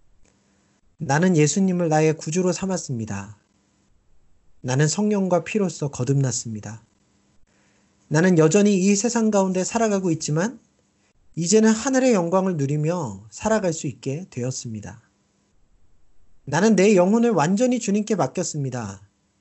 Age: 40-59